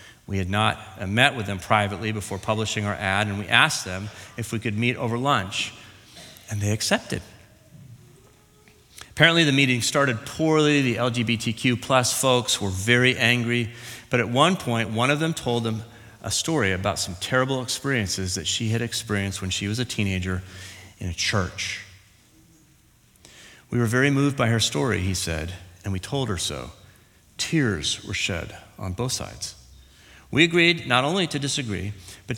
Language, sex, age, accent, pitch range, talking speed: English, male, 40-59, American, 100-130 Hz, 165 wpm